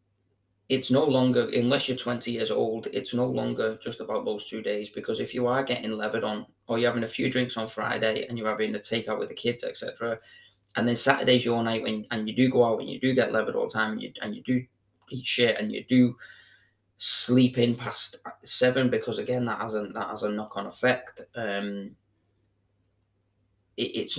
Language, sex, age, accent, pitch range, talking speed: English, male, 20-39, British, 100-125 Hz, 210 wpm